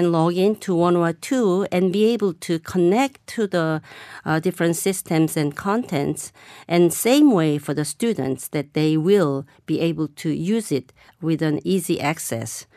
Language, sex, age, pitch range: Korean, female, 50-69, 150-180 Hz